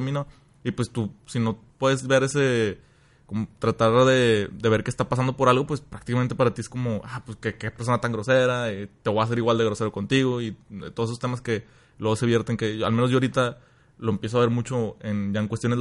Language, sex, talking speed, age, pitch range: Spanish, male, 240 wpm, 20-39, 110-125 Hz